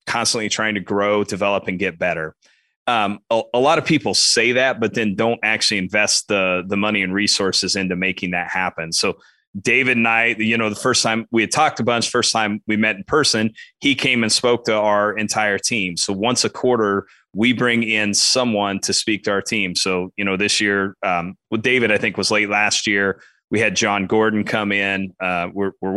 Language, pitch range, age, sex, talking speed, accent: English, 100-115 Hz, 30-49, male, 215 wpm, American